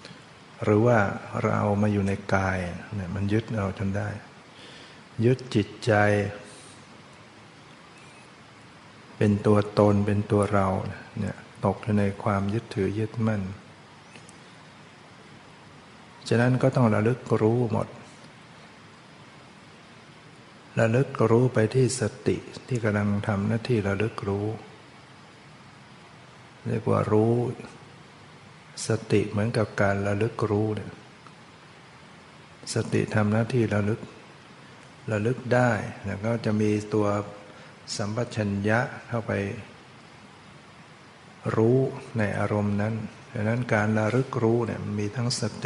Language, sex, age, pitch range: Thai, male, 60-79, 105-115 Hz